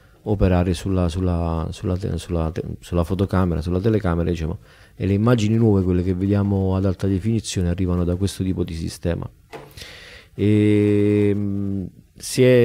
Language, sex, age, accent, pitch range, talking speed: Italian, male, 40-59, native, 95-120 Hz, 110 wpm